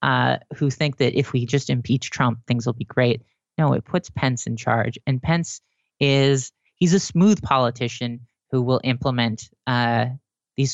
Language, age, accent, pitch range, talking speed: English, 30-49, American, 125-165 Hz, 170 wpm